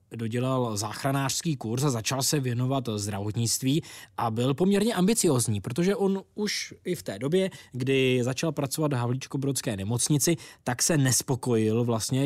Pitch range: 115-150 Hz